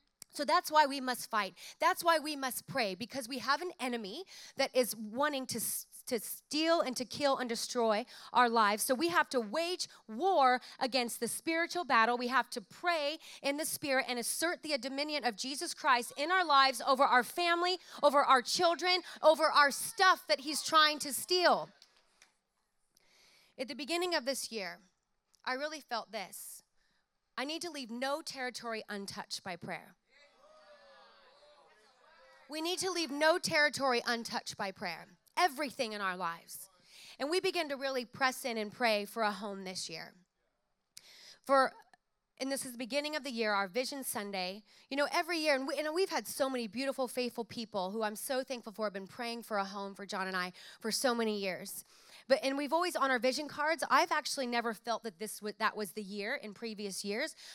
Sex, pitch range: female, 215-295 Hz